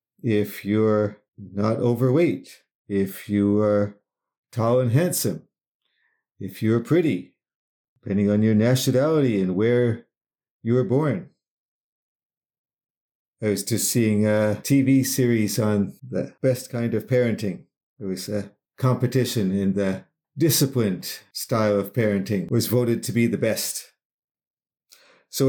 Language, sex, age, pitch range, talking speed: English, male, 50-69, 105-135 Hz, 120 wpm